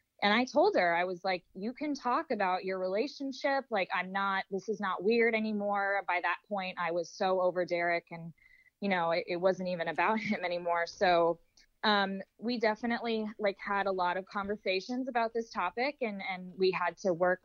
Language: English